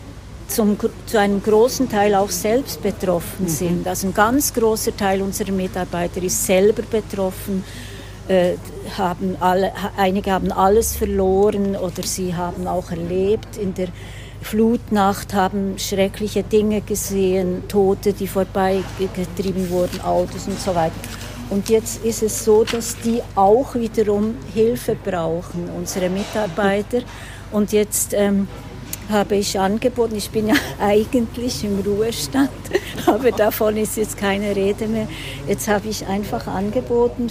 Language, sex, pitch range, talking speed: German, female, 190-220 Hz, 135 wpm